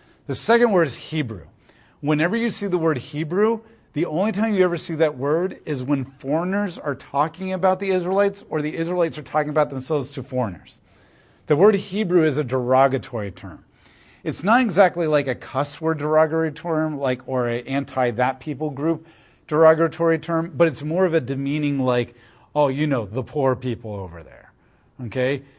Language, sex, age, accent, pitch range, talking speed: English, male, 40-59, American, 125-160 Hz, 175 wpm